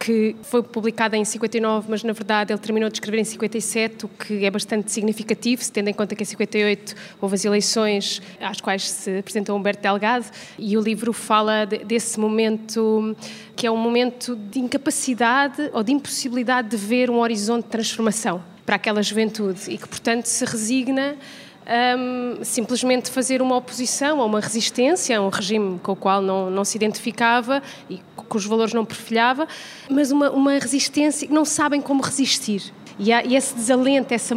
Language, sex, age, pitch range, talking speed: Portuguese, female, 20-39, 215-250 Hz, 180 wpm